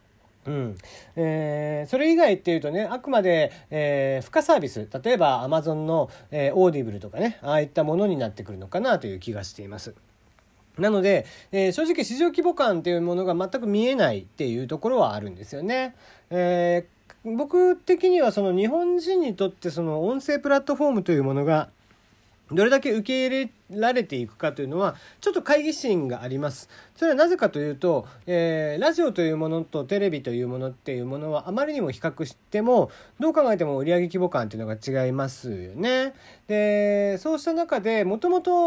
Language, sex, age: Japanese, male, 40-59